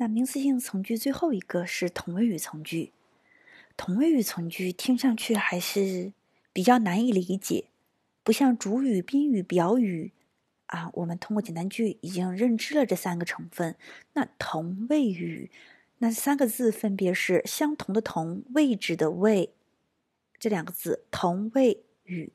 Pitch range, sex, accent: 180-265 Hz, female, native